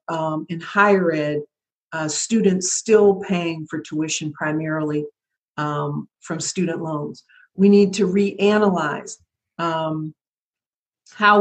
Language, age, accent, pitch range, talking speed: English, 50-69, American, 160-195 Hz, 110 wpm